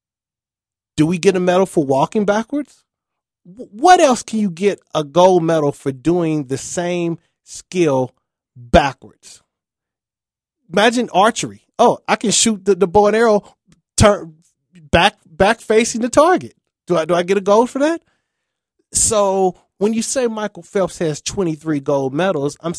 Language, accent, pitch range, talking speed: English, American, 140-205 Hz, 155 wpm